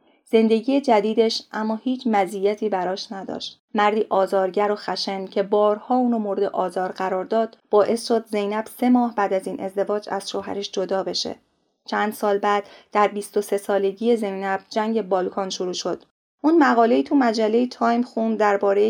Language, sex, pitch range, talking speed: Persian, female, 195-225 Hz, 155 wpm